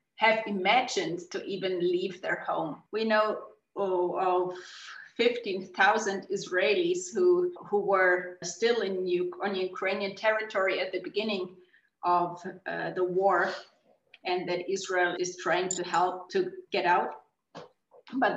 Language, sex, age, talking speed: English, female, 30-49, 135 wpm